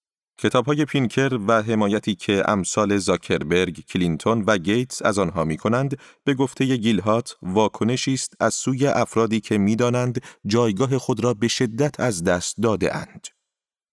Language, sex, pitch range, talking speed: Persian, male, 95-130 Hz, 140 wpm